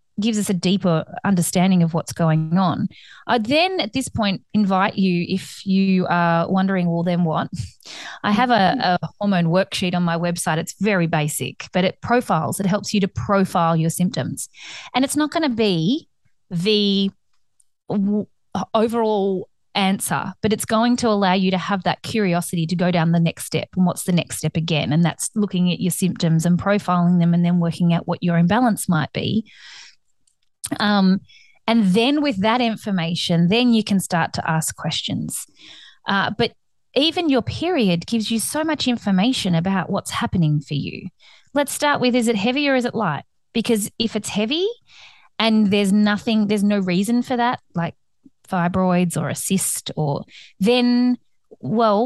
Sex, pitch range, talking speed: female, 175-225 Hz, 175 wpm